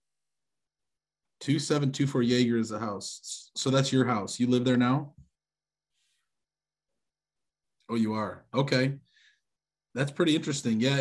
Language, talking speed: English, 115 wpm